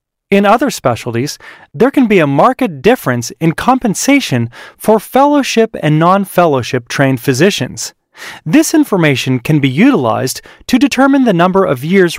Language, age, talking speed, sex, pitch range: English, 30-49, 140 wpm, male, 140-230 Hz